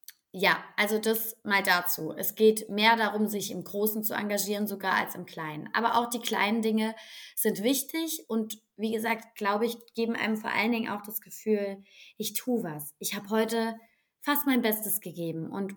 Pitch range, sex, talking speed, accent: 190-235 Hz, female, 185 wpm, German